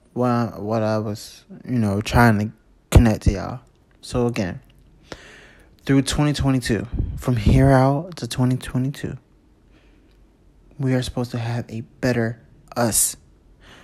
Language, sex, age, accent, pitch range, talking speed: English, male, 20-39, American, 115-140 Hz, 115 wpm